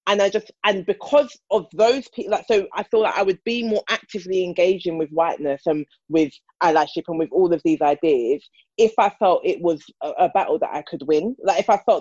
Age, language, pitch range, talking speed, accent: 20-39, English, 155-210 Hz, 230 wpm, British